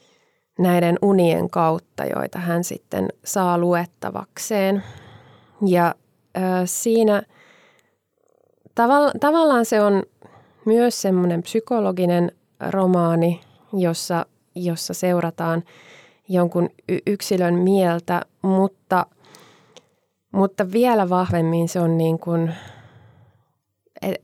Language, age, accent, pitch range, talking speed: Finnish, 20-39, native, 165-190 Hz, 85 wpm